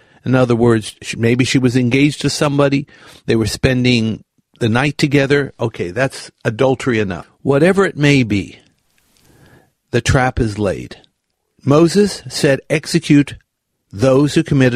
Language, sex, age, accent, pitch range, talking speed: English, male, 60-79, American, 115-150 Hz, 135 wpm